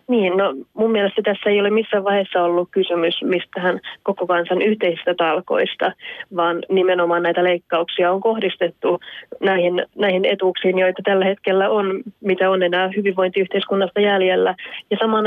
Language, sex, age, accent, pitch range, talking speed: Finnish, female, 30-49, native, 180-200 Hz, 140 wpm